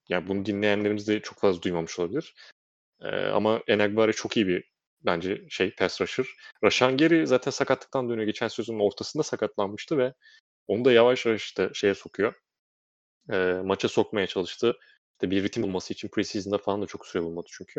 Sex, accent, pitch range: male, native, 100-130 Hz